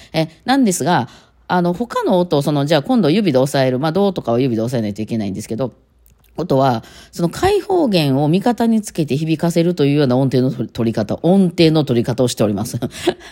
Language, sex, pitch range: Japanese, female, 125-180 Hz